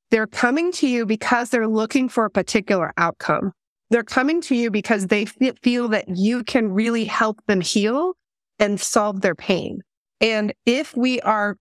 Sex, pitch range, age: female, 205-250 Hz, 30-49